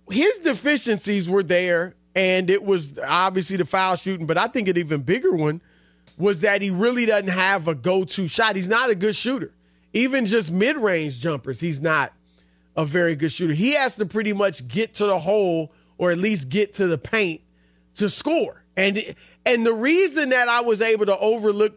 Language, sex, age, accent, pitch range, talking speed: English, male, 30-49, American, 180-255 Hz, 195 wpm